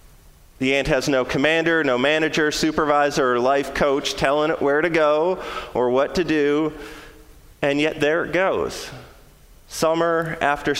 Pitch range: 130-160 Hz